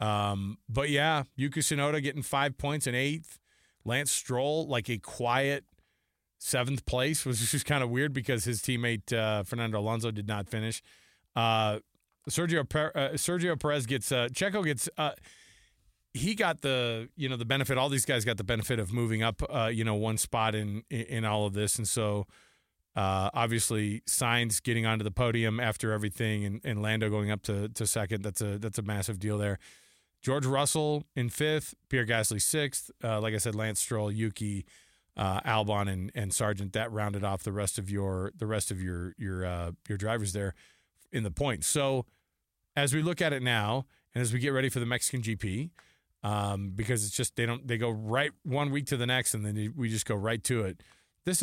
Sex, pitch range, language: male, 105-135 Hz, English